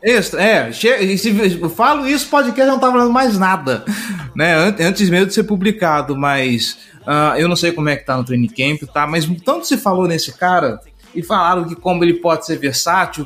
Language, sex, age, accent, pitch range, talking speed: Portuguese, male, 20-39, Brazilian, 145-185 Hz, 215 wpm